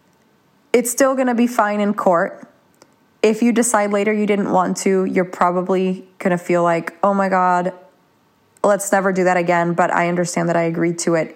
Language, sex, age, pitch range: English, female, 30-49, 180-220 Hz